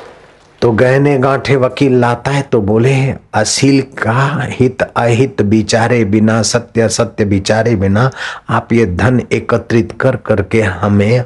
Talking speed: 135 wpm